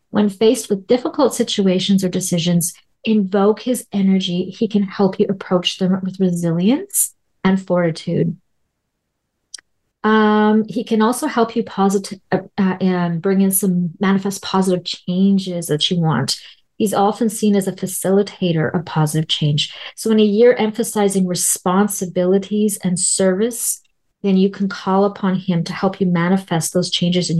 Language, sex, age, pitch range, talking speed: English, female, 40-59, 180-215 Hz, 150 wpm